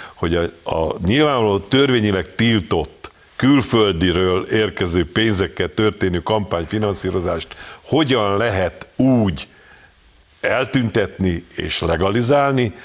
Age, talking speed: 50-69, 80 wpm